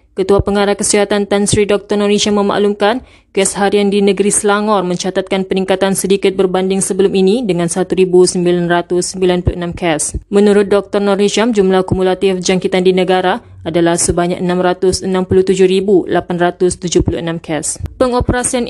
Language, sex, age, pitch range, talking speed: Malay, female, 20-39, 190-220 Hz, 110 wpm